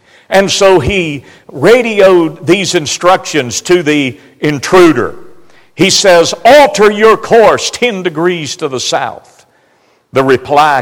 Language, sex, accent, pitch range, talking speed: English, male, American, 145-220 Hz, 115 wpm